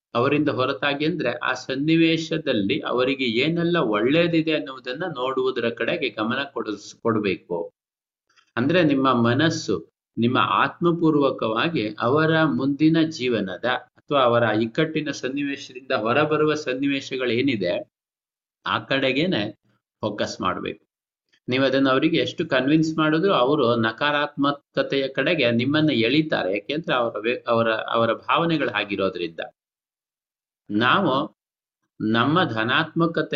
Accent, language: native, Kannada